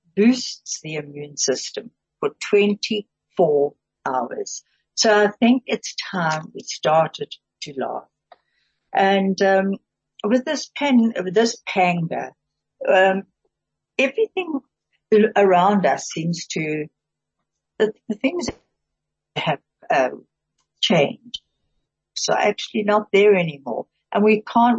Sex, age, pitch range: female, 60-79, 160-215 Hz